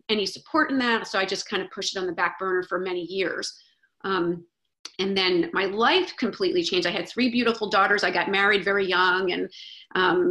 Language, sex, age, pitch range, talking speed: English, female, 30-49, 185-230 Hz, 215 wpm